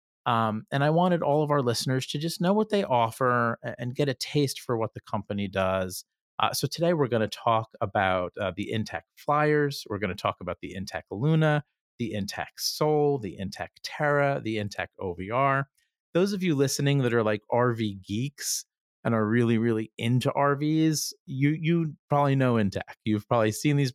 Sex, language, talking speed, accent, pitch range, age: male, English, 190 wpm, American, 110-145 Hz, 40-59